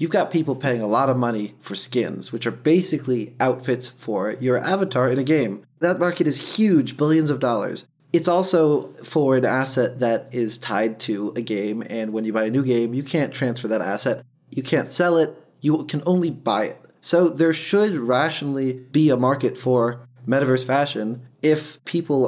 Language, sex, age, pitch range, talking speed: English, male, 20-39, 120-150 Hz, 190 wpm